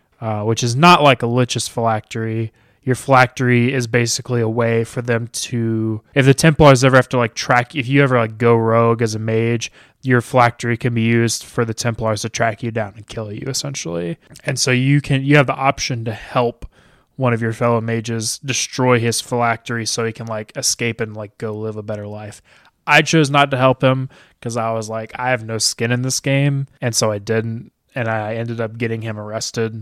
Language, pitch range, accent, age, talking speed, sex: English, 115-130 Hz, American, 20-39, 215 wpm, male